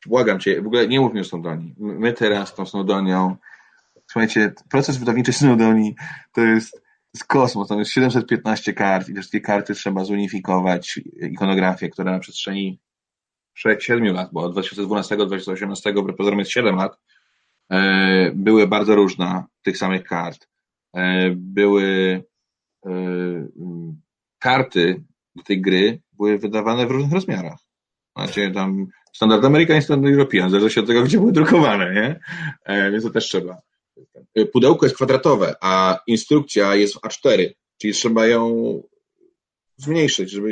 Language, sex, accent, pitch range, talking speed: Polish, male, native, 95-120 Hz, 135 wpm